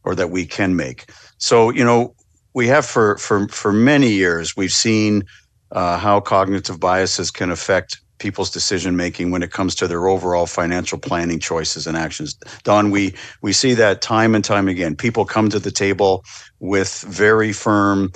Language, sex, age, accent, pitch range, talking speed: English, male, 50-69, American, 90-110 Hz, 180 wpm